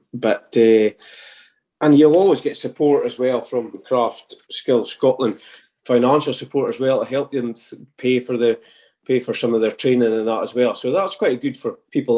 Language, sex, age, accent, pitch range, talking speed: English, male, 30-49, British, 110-130 Hz, 195 wpm